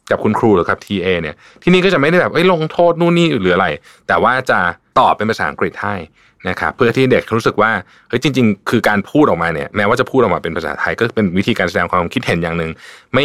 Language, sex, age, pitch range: Thai, male, 20-39, 95-130 Hz